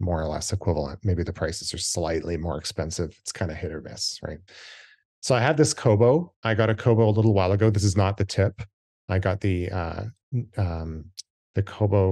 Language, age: English, 30-49